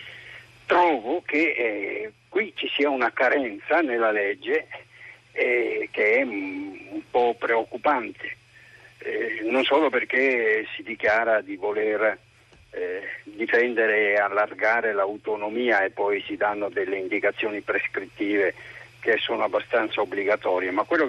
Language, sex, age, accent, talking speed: Italian, male, 60-79, native, 120 wpm